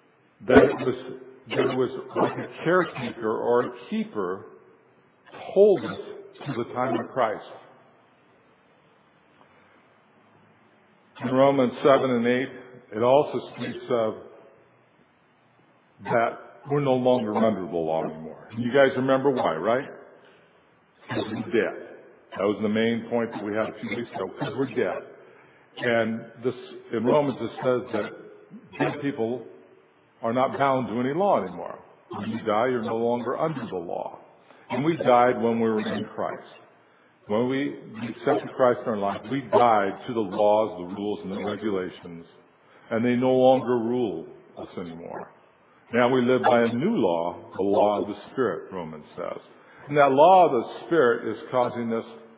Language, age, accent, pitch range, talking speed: English, 60-79, American, 115-135 Hz, 160 wpm